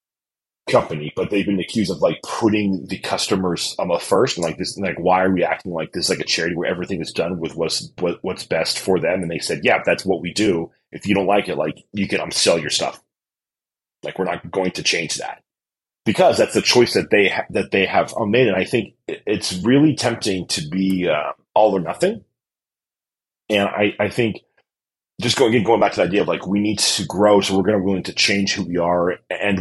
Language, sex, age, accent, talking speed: English, male, 30-49, American, 230 wpm